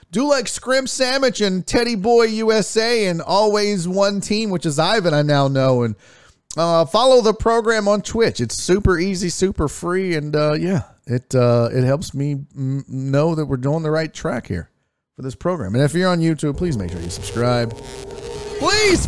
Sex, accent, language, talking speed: male, American, English, 190 wpm